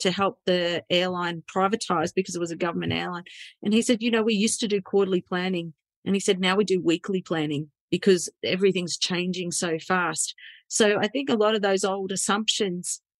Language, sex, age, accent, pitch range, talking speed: English, female, 40-59, Australian, 185-215 Hz, 200 wpm